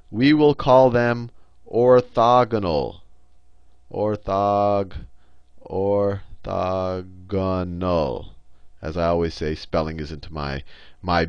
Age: 30-49